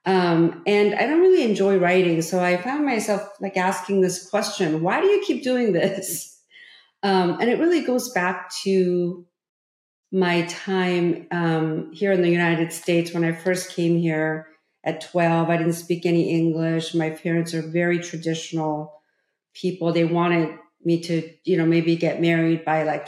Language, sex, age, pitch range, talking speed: English, female, 40-59, 165-195 Hz, 170 wpm